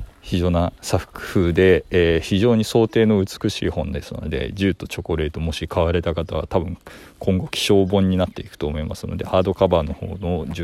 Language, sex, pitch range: Japanese, male, 85-110 Hz